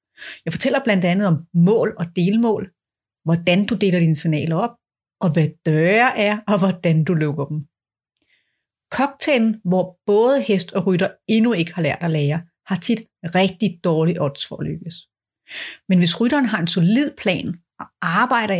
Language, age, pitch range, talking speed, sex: Danish, 30-49, 170-220 Hz, 170 wpm, female